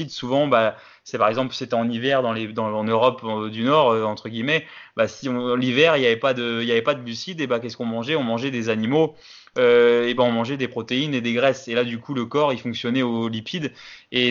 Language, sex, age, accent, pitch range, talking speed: French, male, 20-39, French, 115-130 Hz, 255 wpm